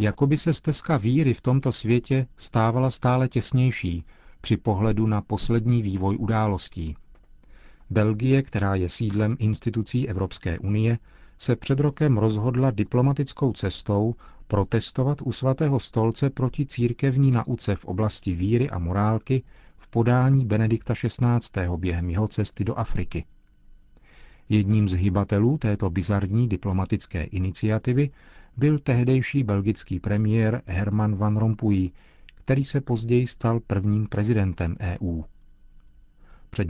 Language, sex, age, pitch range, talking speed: Czech, male, 40-59, 95-120 Hz, 120 wpm